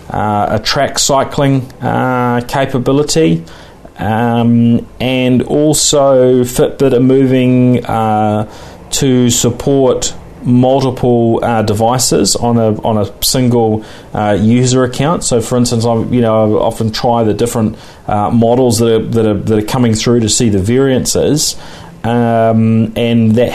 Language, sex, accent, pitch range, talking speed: English, male, Australian, 105-125 Hz, 140 wpm